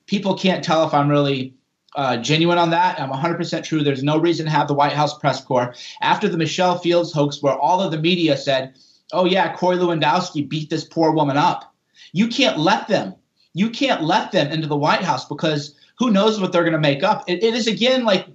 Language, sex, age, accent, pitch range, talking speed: English, male, 30-49, American, 140-175 Hz, 230 wpm